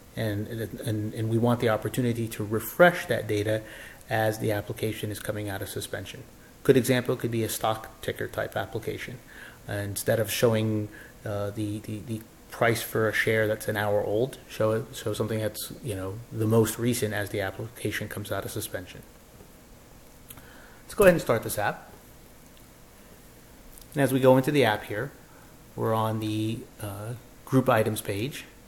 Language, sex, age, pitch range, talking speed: English, male, 30-49, 105-125 Hz, 175 wpm